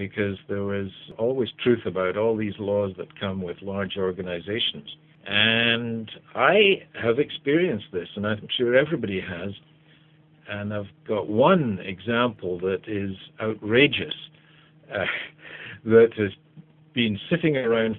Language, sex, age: English, male, 60-79